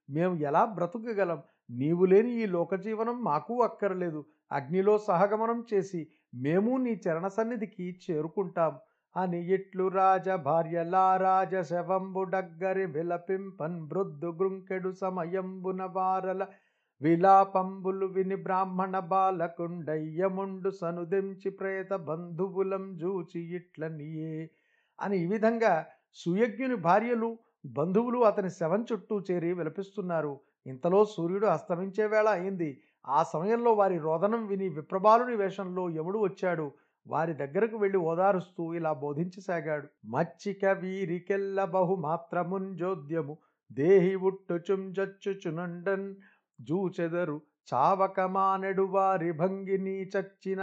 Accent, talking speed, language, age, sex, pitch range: native, 90 wpm, Telugu, 50-69, male, 170-195 Hz